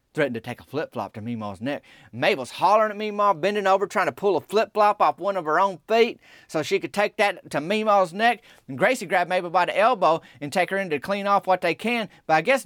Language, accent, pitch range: English, American, 140-200 Hz